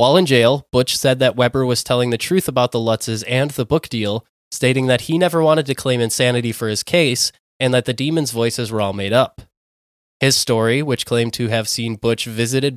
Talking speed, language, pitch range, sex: 220 wpm, English, 110-130 Hz, male